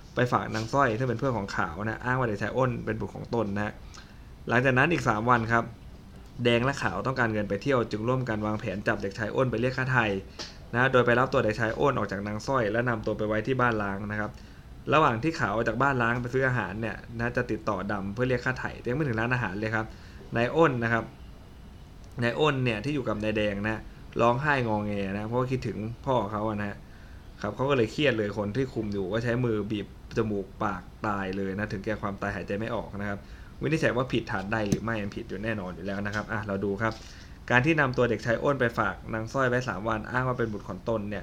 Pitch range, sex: 105-125 Hz, male